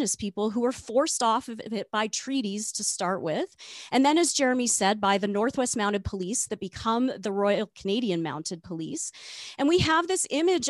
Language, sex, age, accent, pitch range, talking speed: English, female, 30-49, American, 200-270 Hz, 190 wpm